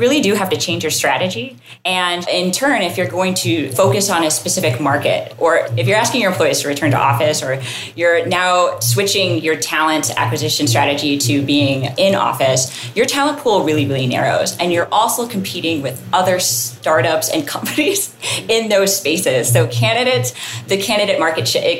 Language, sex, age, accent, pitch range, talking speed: English, female, 20-39, American, 140-180 Hz, 180 wpm